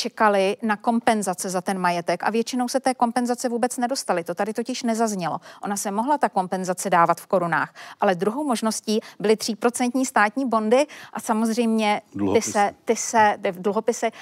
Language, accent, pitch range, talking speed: Czech, native, 200-240 Hz, 170 wpm